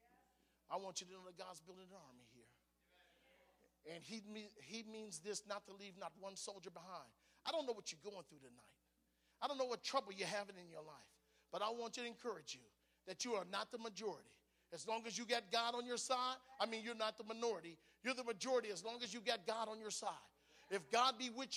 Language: English